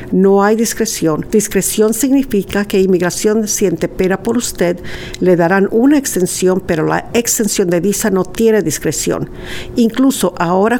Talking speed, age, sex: 140 wpm, 50-69, female